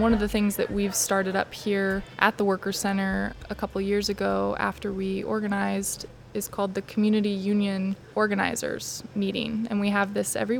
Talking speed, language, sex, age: 180 wpm, English, female, 20-39